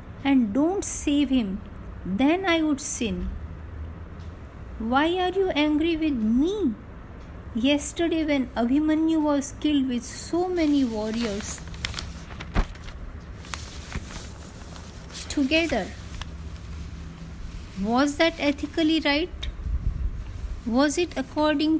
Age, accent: 50-69, native